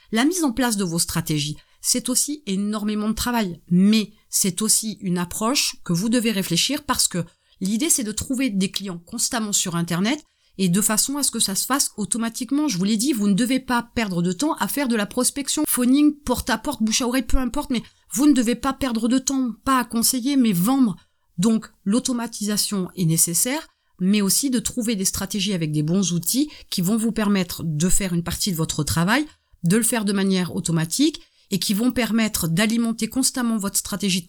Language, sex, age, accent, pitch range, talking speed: French, female, 30-49, French, 185-250 Hz, 205 wpm